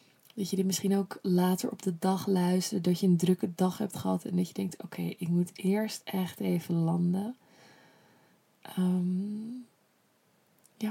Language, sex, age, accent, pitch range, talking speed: Dutch, female, 20-39, Dutch, 175-200 Hz, 170 wpm